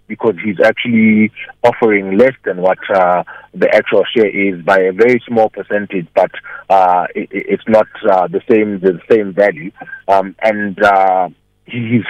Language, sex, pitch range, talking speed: English, male, 95-115 Hz, 160 wpm